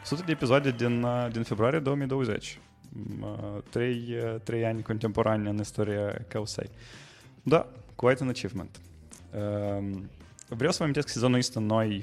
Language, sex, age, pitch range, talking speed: English, male, 20-39, 100-120 Hz, 140 wpm